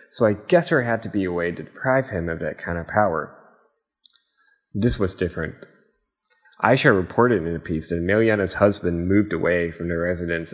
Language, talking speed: English, 190 wpm